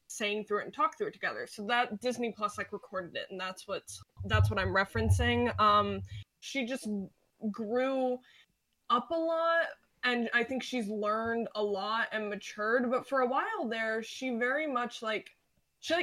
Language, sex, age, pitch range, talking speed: English, female, 10-29, 200-250 Hz, 180 wpm